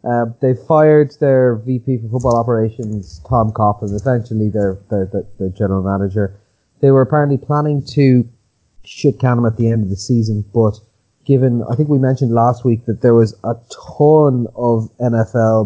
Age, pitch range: 30-49, 110-130 Hz